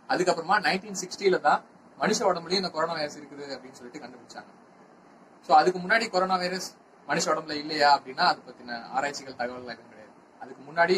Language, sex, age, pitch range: Tamil, male, 30-49, 140-185 Hz